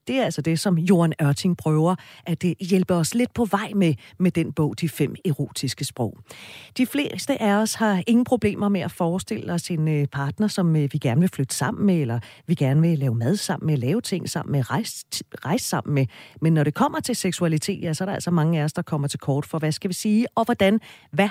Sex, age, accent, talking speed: female, 40-59, native, 240 wpm